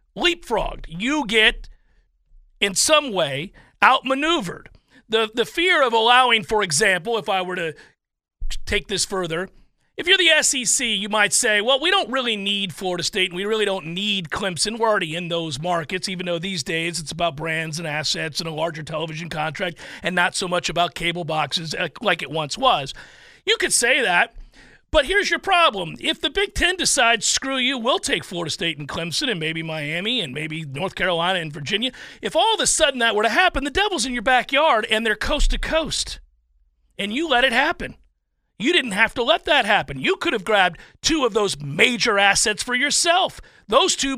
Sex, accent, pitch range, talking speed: male, American, 170-270 Hz, 195 wpm